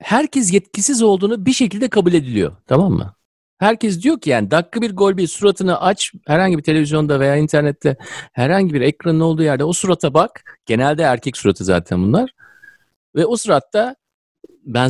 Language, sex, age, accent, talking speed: Turkish, male, 50-69, native, 165 wpm